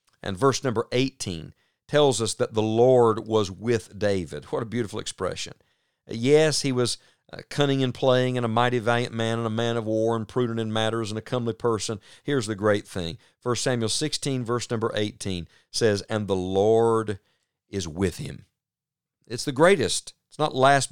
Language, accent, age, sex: English, American, 50-69, male